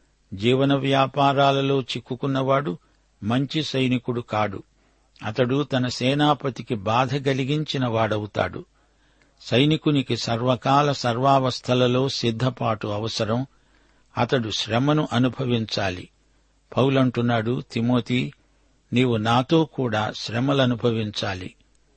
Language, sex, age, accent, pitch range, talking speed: Telugu, male, 60-79, native, 115-140 Hz, 70 wpm